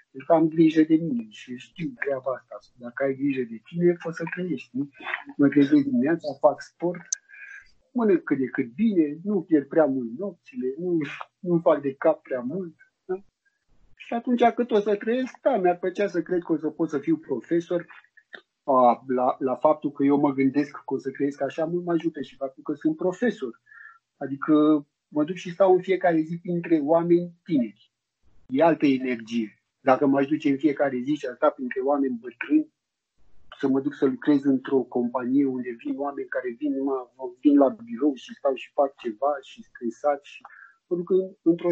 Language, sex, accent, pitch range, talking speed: Romanian, male, native, 140-195 Hz, 190 wpm